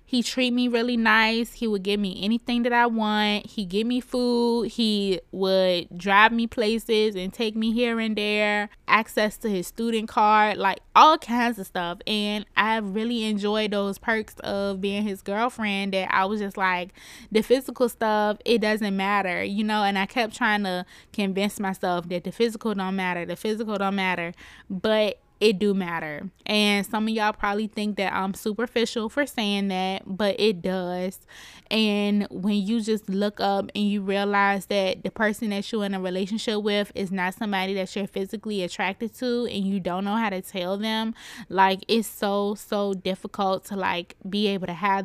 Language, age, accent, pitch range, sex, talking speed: English, 20-39, American, 195-225 Hz, female, 190 wpm